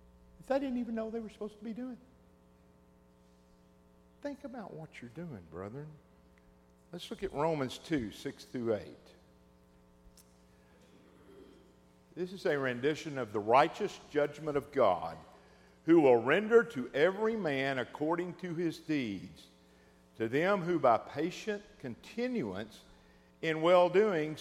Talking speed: 130 wpm